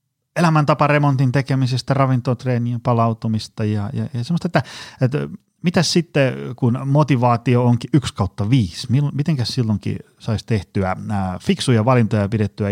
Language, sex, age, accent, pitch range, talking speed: Finnish, male, 30-49, native, 100-135 Hz, 110 wpm